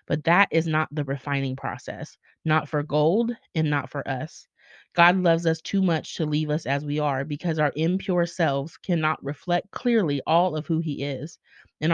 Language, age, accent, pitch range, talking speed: English, 30-49, American, 145-175 Hz, 190 wpm